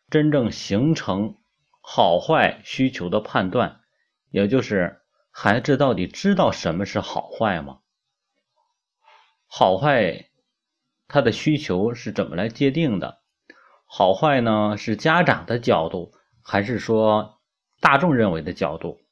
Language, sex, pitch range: Chinese, male, 100-150 Hz